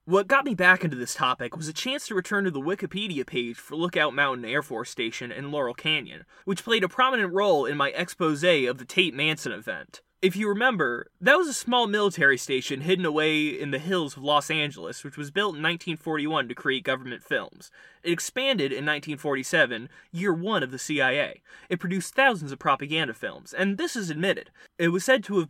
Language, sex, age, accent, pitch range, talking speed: English, male, 20-39, American, 135-185 Hz, 205 wpm